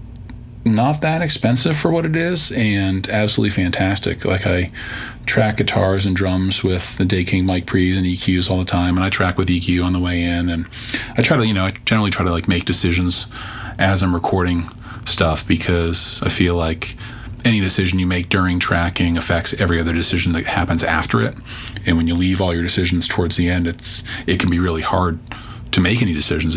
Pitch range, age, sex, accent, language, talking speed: 90-115 Hz, 40-59, male, American, English, 205 wpm